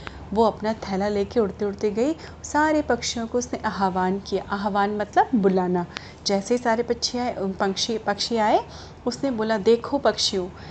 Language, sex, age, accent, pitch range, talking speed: Hindi, female, 30-49, native, 205-265 Hz, 155 wpm